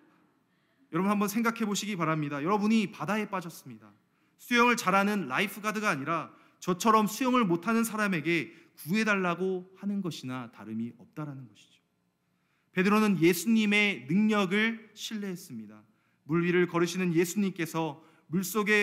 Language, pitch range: Korean, 115-185 Hz